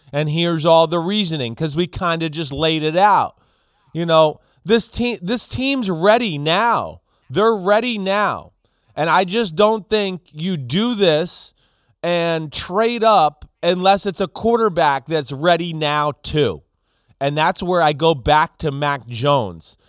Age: 30-49